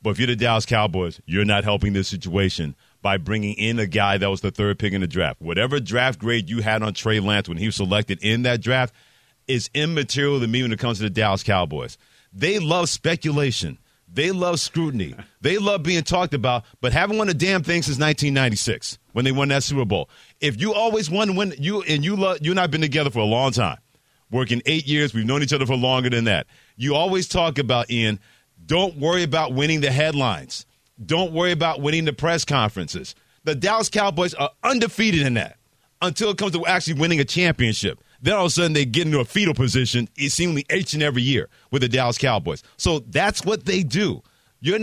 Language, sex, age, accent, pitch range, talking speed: English, male, 40-59, American, 115-170 Hz, 215 wpm